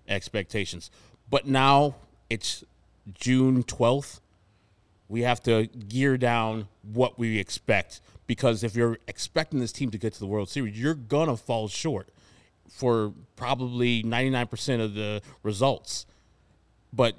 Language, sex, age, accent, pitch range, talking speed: English, male, 30-49, American, 100-125 Hz, 135 wpm